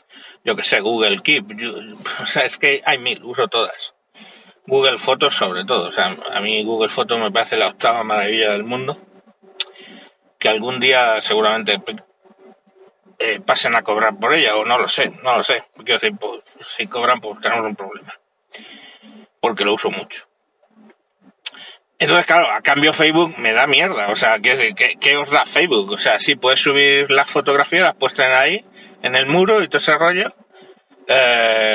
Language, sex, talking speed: Spanish, male, 170 wpm